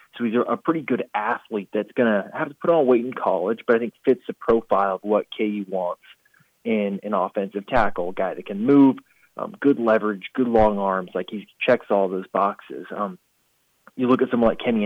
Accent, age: American, 30-49